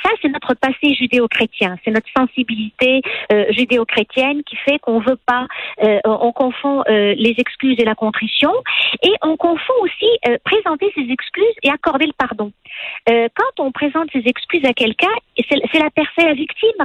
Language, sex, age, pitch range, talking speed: French, female, 50-69, 235-315 Hz, 180 wpm